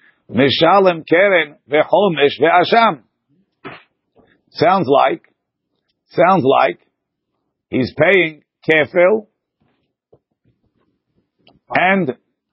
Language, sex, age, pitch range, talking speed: English, male, 50-69, 135-170 Hz, 55 wpm